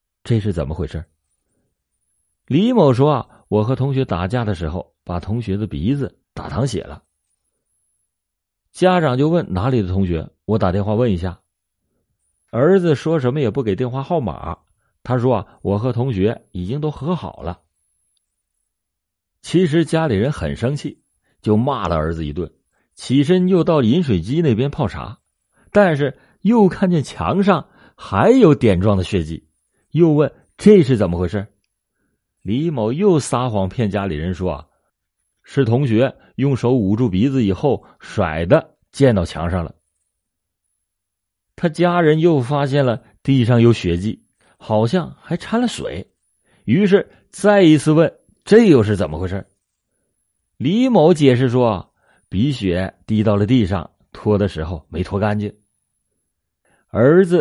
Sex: male